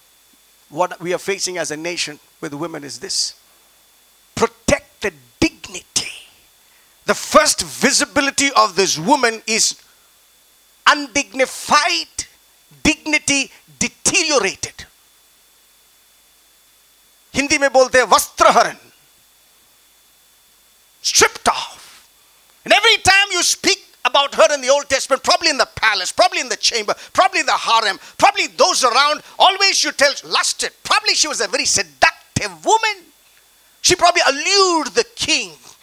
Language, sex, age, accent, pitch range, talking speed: English, male, 50-69, Indian, 250-350 Hz, 115 wpm